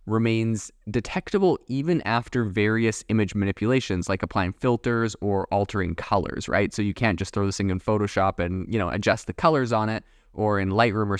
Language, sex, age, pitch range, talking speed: English, male, 20-39, 100-125 Hz, 190 wpm